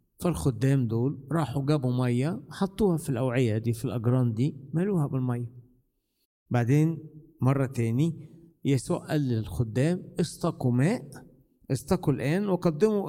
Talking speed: 110 wpm